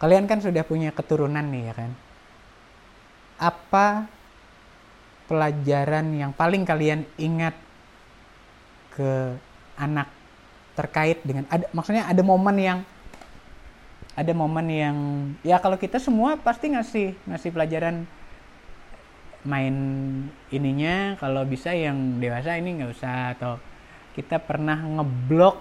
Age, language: 20-39, Indonesian